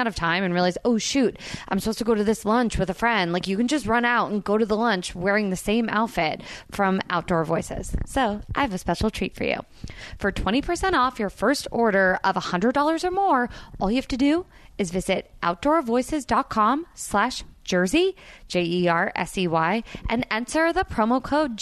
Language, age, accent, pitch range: English, 20-39, American, 185-260 Hz